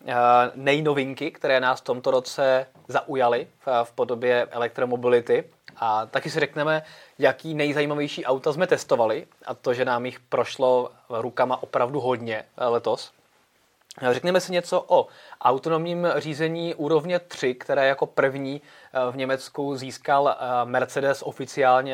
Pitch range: 125-155 Hz